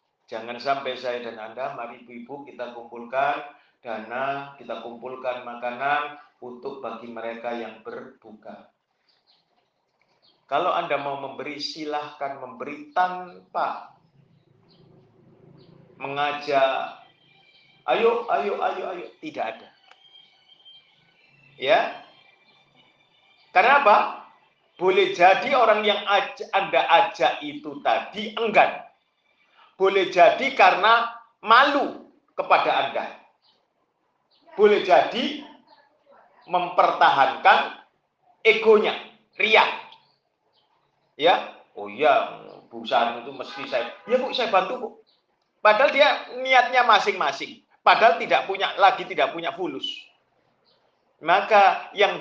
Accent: native